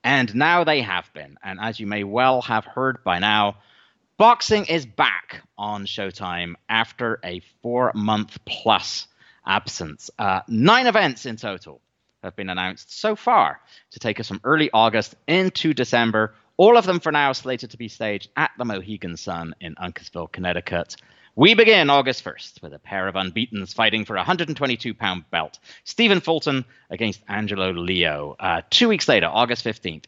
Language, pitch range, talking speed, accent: English, 100-145 Hz, 170 wpm, British